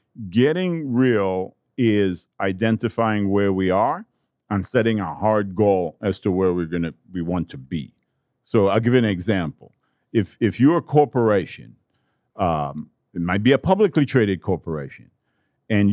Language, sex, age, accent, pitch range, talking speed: English, male, 50-69, American, 95-130 Hz, 155 wpm